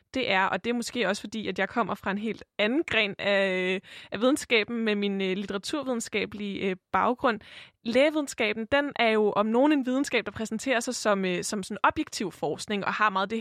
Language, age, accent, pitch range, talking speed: Danish, 20-39, native, 200-250 Hz, 190 wpm